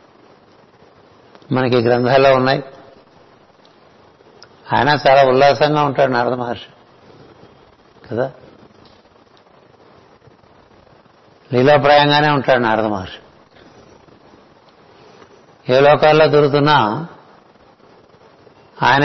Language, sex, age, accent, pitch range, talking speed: Telugu, male, 60-79, native, 125-145 Hz, 55 wpm